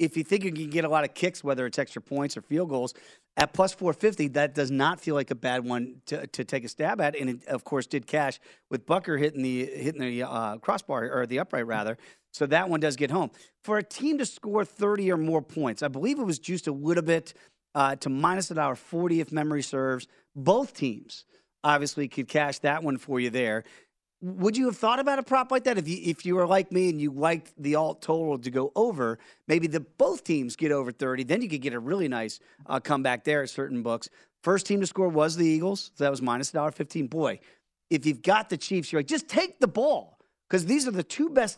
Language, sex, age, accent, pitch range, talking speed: English, male, 40-59, American, 140-185 Hz, 245 wpm